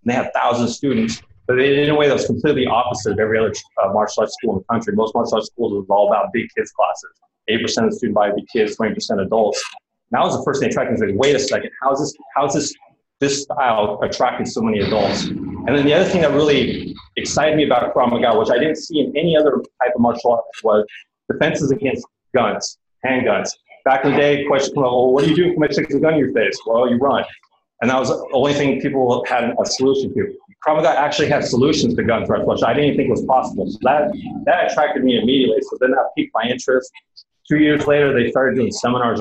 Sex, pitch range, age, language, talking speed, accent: male, 115-150 Hz, 30-49, English, 245 wpm, American